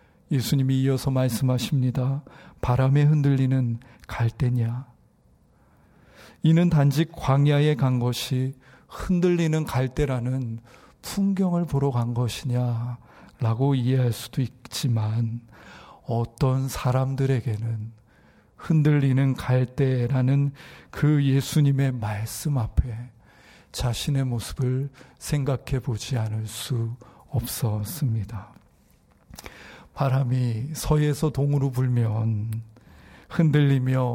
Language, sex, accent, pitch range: Korean, male, native, 120-140 Hz